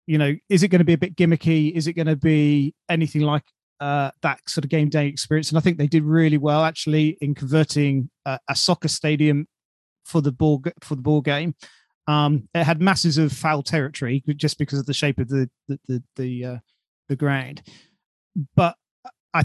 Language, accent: English, British